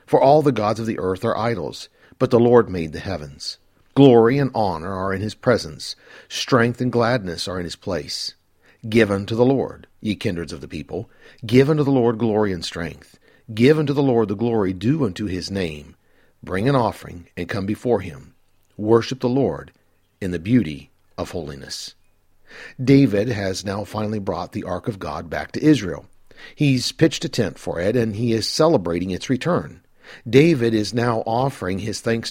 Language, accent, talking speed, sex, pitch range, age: English, American, 185 wpm, male, 90-125 Hz, 50-69